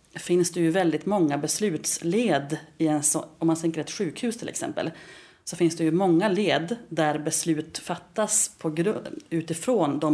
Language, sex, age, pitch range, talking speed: Swedish, female, 30-49, 150-175 Hz, 170 wpm